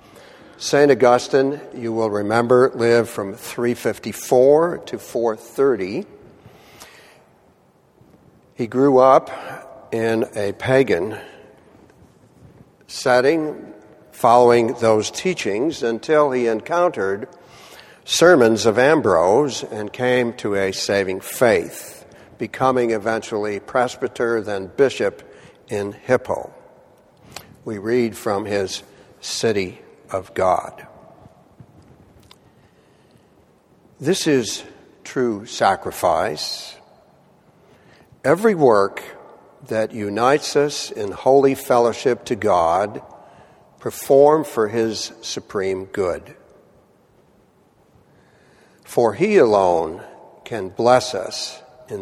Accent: American